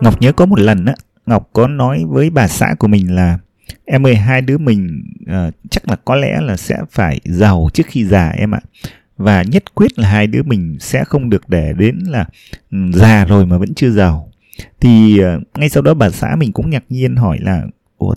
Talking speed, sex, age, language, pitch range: 215 wpm, male, 20-39, Vietnamese, 95-130 Hz